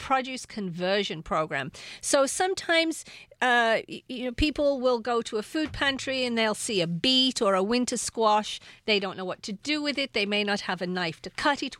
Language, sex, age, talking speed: English, female, 50-69, 210 wpm